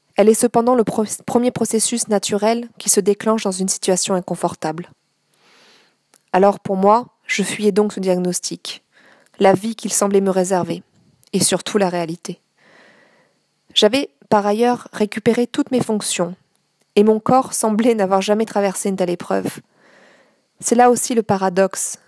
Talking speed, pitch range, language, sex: 145 wpm, 190-230 Hz, French, female